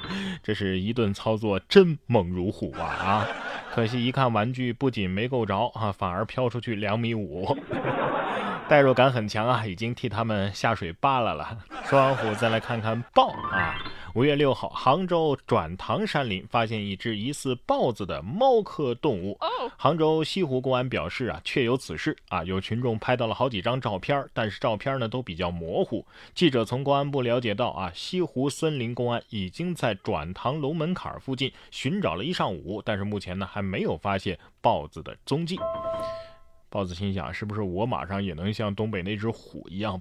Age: 20-39